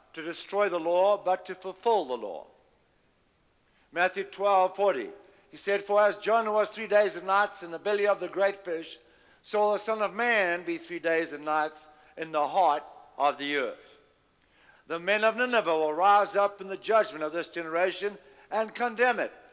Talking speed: 185 wpm